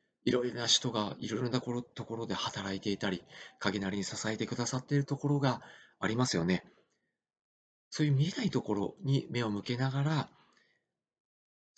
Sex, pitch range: male, 100-130 Hz